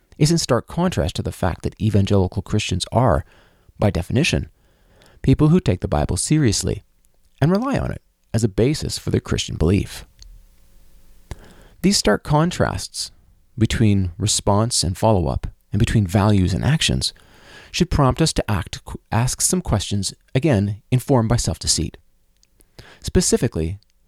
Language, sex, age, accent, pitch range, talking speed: English, male, 30-49, American, 90-130 Hz, 135 wpm